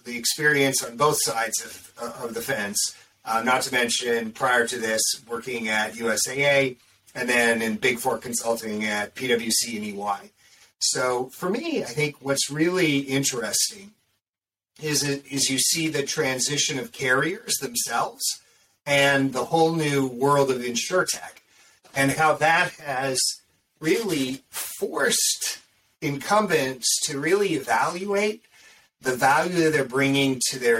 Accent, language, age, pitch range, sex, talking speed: American, English, 40-59, 125-155 Hz, male, 140 wpm